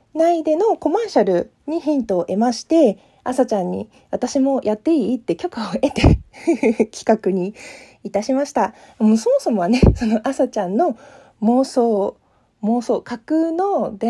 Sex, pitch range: female, 210-275 Hz